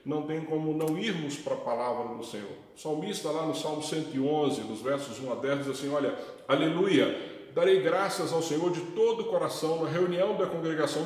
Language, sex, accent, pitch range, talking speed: Portuguese, male, Brazilian, 140-175 Hz, 200 wpm